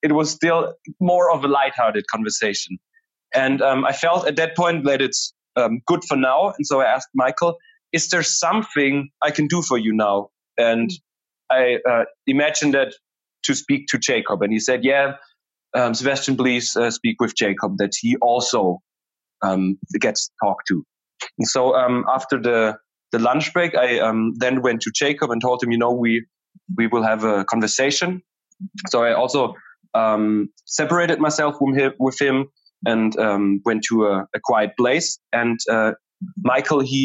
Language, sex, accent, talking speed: English, male, German, 175 wpm